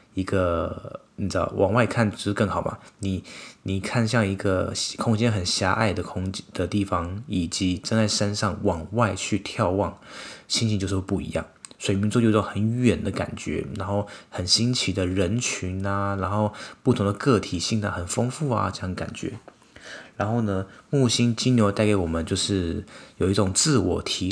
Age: 20-39